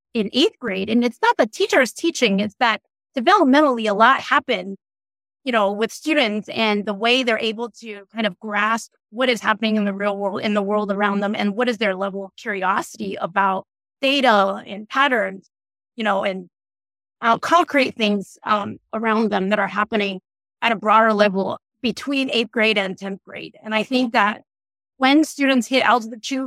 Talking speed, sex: 185 wpm, female